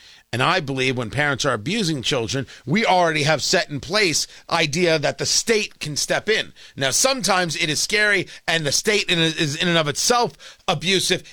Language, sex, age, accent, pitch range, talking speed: English, male, 40-59, American, 175-250 Hz, 185 wpm